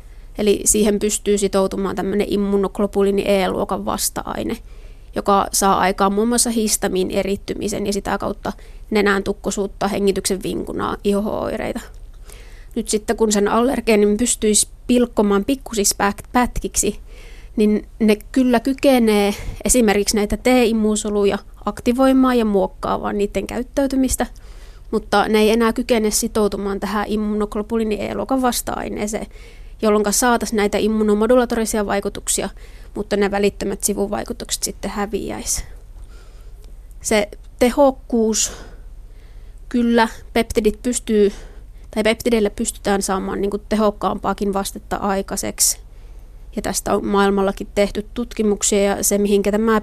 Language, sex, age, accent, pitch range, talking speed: Finnish, female, 20-39, native, 195-220 Hz, 105 wpm